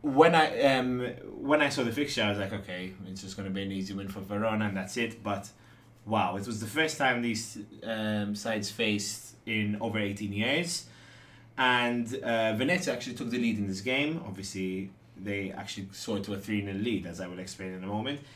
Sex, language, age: male, English, 20-39